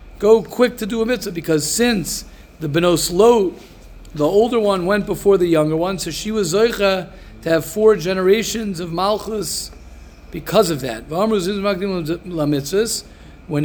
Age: 50-69